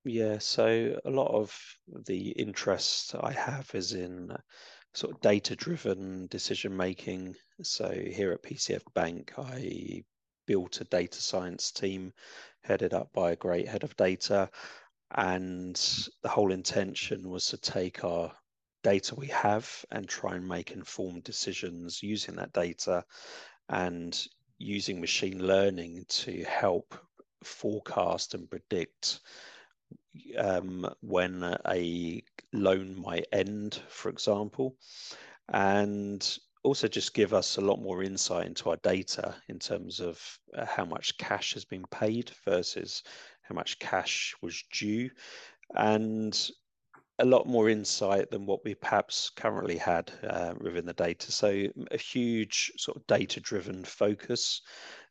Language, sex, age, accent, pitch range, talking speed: English, male, 30-49, British, 90-105 Hz, 130 wpm